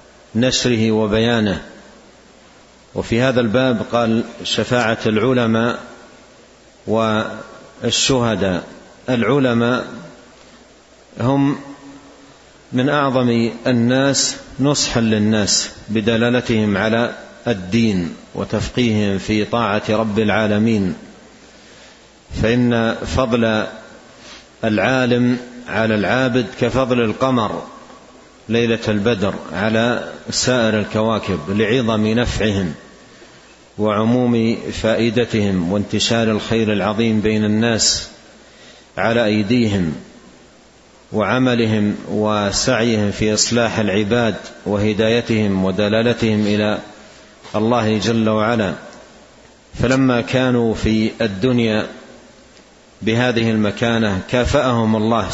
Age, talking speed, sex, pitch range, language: 50-69, 70 wpm, male, 105-120 Hz, Arabic